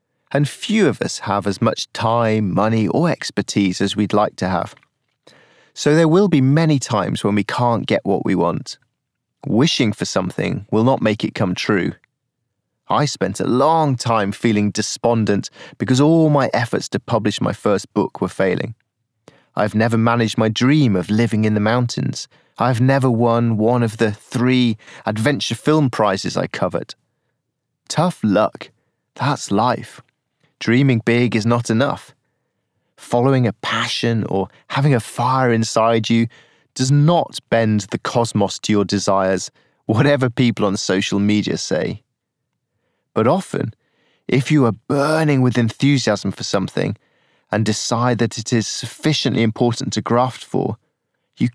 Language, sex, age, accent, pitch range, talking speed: English, male, 30-49, British, 105-135 Hz, 150 wpm